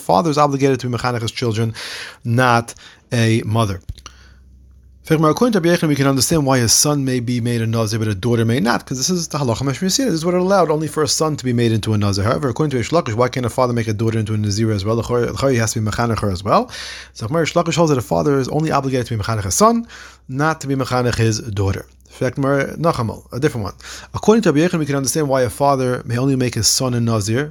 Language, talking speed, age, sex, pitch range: English, 240 wpm, 30-49, male, 115-150 Hz